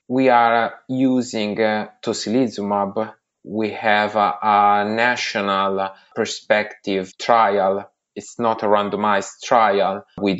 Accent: Italian